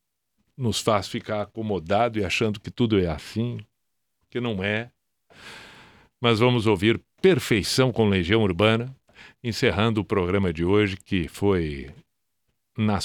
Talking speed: 130 wpm